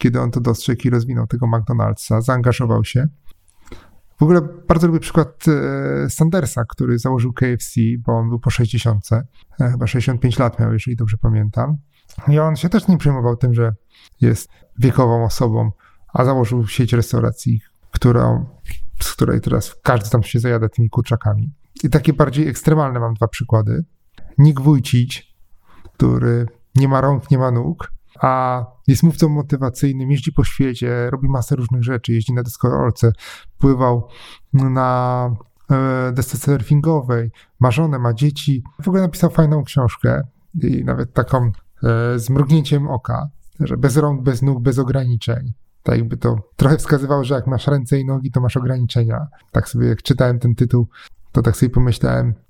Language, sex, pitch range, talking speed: Polish, male, 115-140 Hz, 155 wpm